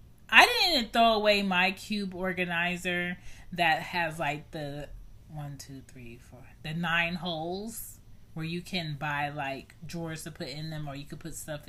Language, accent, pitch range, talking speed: English, American, 145-185 Hz, 170 wpm